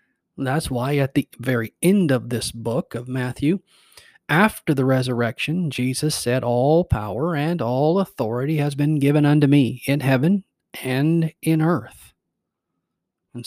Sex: male